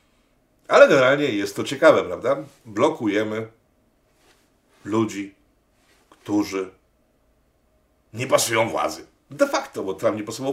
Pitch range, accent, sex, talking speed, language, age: 115-175 Hz, native, male, 105 wpm, Polish, 50-69